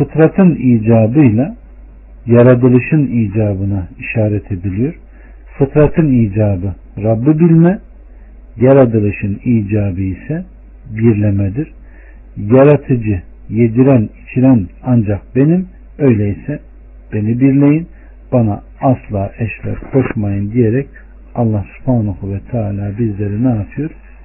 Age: 50-69